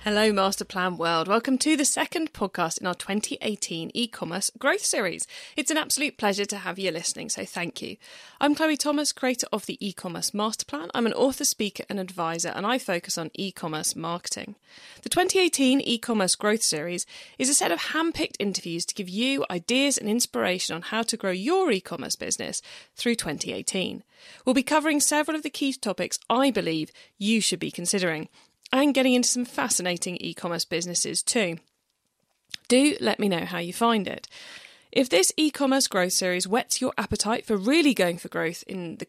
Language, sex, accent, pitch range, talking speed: English, female, British, 185-275 Hz, 180 wpm